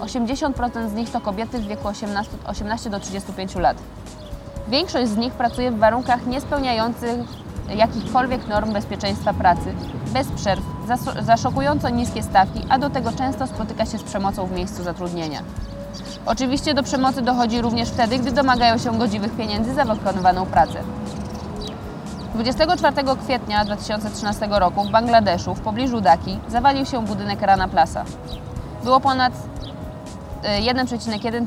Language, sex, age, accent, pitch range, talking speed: Polish, female, 20-39, native, 200-245 Hz, 135 wpm